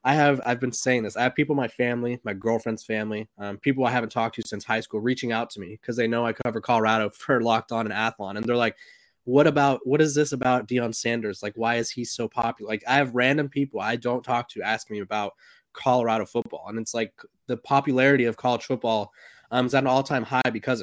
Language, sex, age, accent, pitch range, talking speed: English, male, 20-39, American, 110-130 Hz, 245 wpm